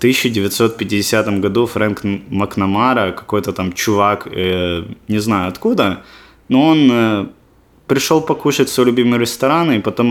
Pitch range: 100-125 Hz